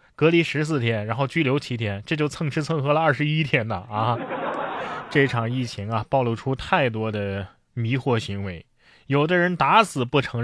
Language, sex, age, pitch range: Chinese, male, 20-39, 120-165 Hz